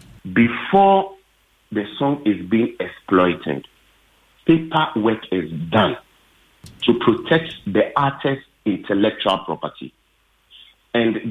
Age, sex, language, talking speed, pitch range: 50-69, male, English, 90 wpm, 90-125 Hz